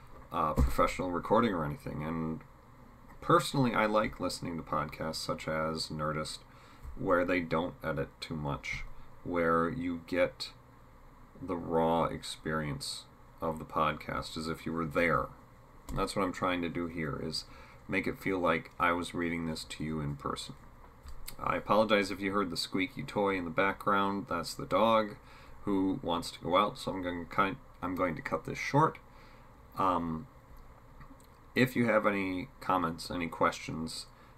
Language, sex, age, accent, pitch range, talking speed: English, male, 40-59, American, 80-105 Hz, 160 wpm